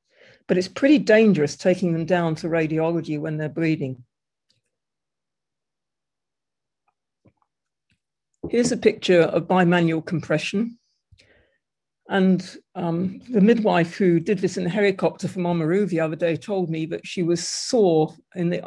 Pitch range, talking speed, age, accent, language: 160-200 Hz, 135 wpm, 50-69, British, English